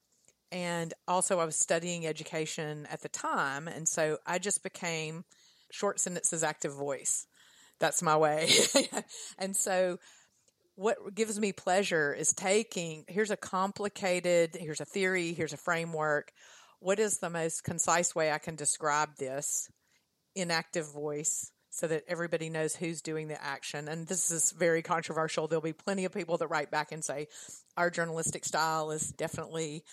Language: English